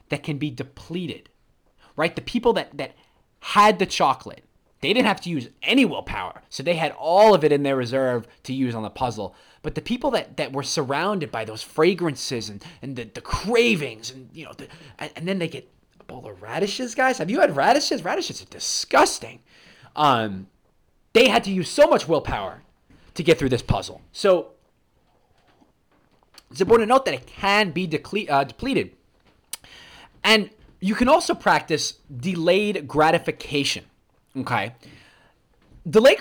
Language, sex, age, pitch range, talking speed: English, male, 20-39, 125-190 Hz, 170 wpm